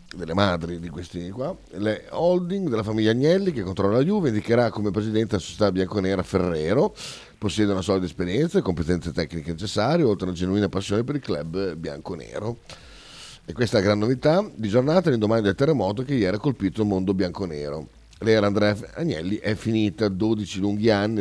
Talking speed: 185 wpm